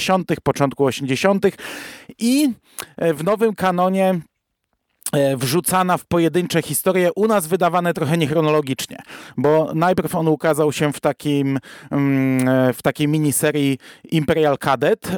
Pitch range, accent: 140-170 Hz, native